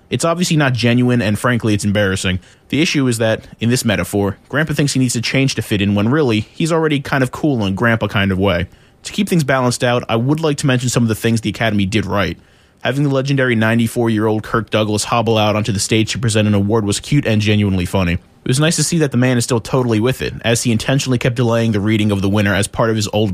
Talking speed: 260 wpm